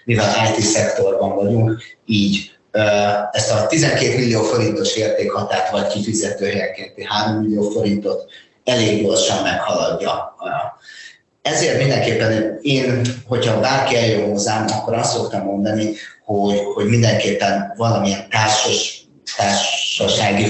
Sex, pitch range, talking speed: male, 100-120 Hz, 100 wpm